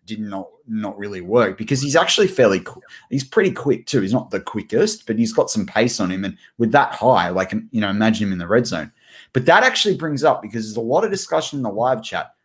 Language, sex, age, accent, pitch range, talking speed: English, male, 20-39, Australian, 110-135 Hz, 255 wpm